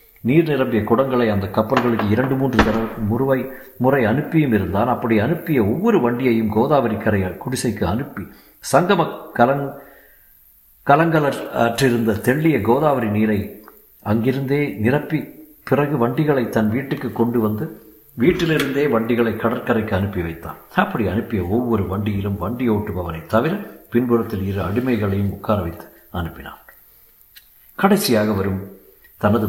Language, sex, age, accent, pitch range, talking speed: Tamil, male, 50-69, native, 100-130 Hz, 105 wpm